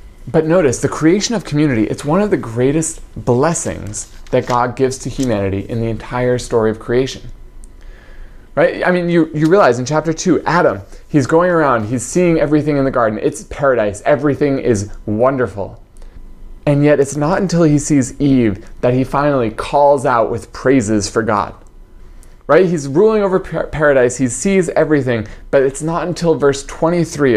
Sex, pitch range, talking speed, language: male, 110-155 Hz, 170 wpm, English